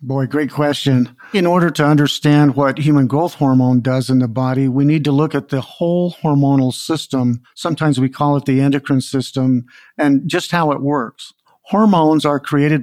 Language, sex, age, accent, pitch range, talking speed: English, male, 50-69, American, 135-155 Hz, 180 wpm